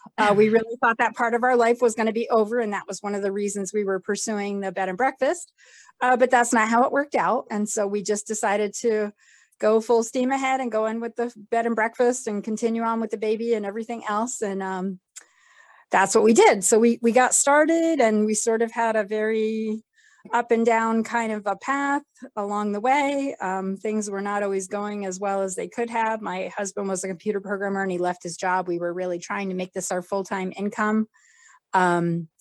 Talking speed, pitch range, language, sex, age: 230 wpm, 200-235 Hz, English, female, 30-49